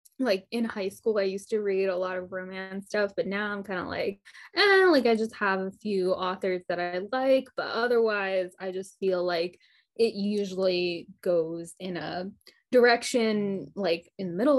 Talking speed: 190 wpm